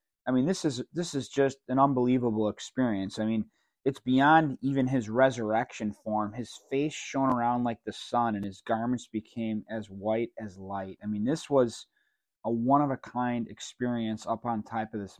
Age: 20-39